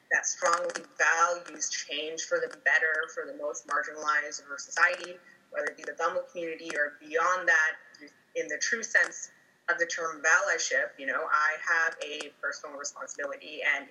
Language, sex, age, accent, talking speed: English, female, 20-39, American, 170 wpm